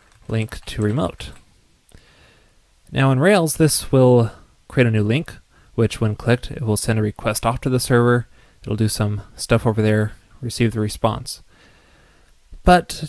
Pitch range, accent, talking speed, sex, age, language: 105-125 Hz, American, 155 wpm, male, 20-39, English